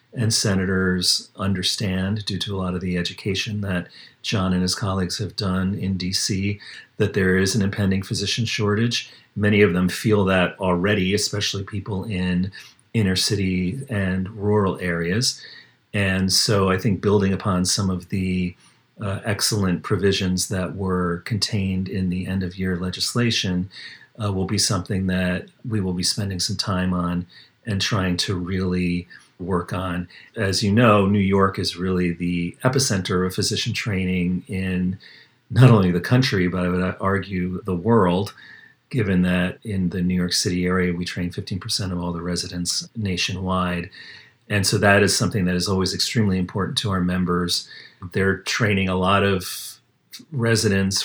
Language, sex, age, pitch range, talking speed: English, male, 40-59, 90-105 Hz, 160 wpm